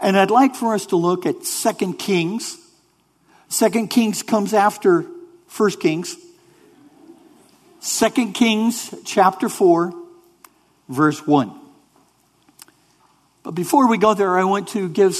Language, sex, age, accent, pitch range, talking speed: English, male, 60-79, American, 170-240 Hz, 120 wpm